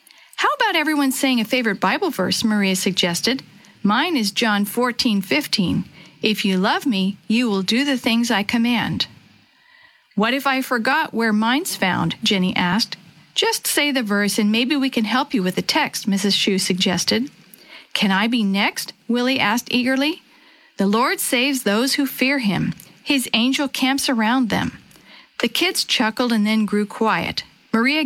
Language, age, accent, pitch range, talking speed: English, 50-69, American, 200-260 Hz, 165 wpm